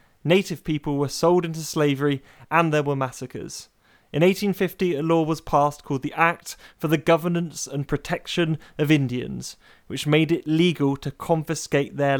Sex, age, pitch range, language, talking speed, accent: male, 30-49, 140-170 Hz, English, 160 wpm, British